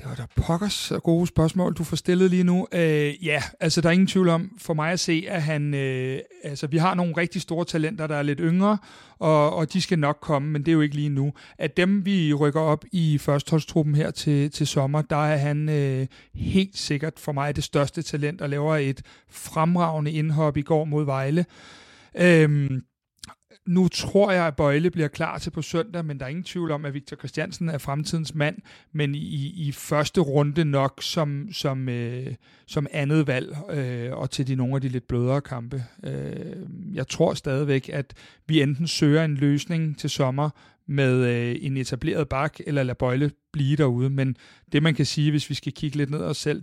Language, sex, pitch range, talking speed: Danish, male, 135-165 Hz, 205 wpm